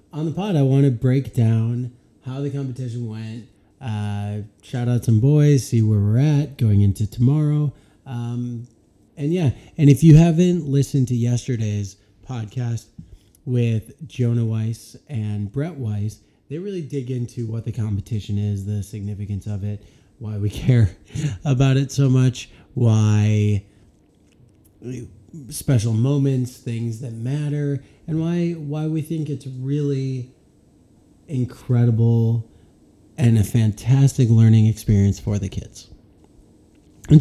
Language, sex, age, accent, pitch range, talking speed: English, male, 30-49, American, 110-140 Hz, 135 wpm